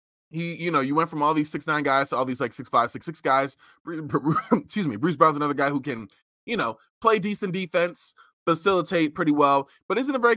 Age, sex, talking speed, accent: 20-39, male, 230 wpm, American